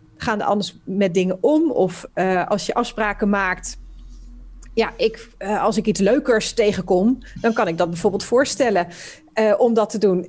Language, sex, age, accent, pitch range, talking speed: Dutch, female, 30-49, Dutch, 190-225 Hz, 175 wpm